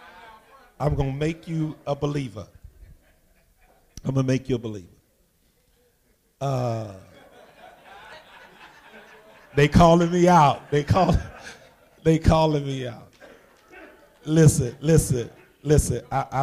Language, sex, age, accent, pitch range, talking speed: English, male, 50-69, American, 120-155 Hz, 105 wpm